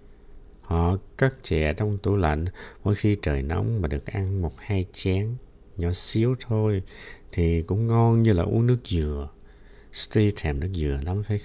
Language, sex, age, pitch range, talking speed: Vietnamese, male, 60-79, 85-110 Hz, 175 wpm